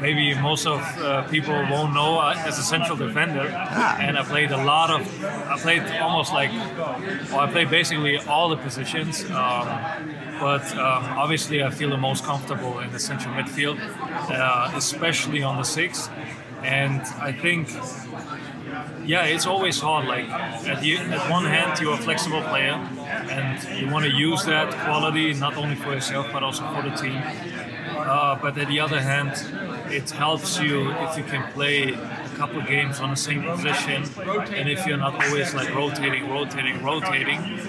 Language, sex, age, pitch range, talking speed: English, male, 20-39, 135-155 Hz, 170 wpm